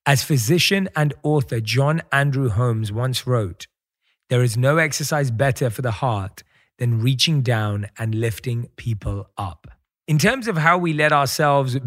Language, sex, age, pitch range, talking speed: English, male, 30-49, 120-165 Hz, 155 wpm